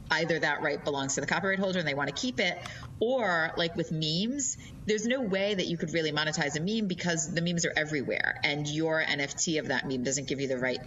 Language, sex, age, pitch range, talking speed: English, female, 30-49, 135-175 Hz, 240 wpm